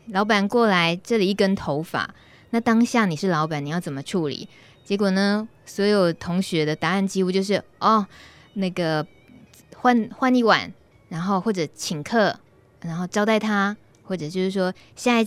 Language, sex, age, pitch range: Chinese, female, 20-39, 170-220 Hz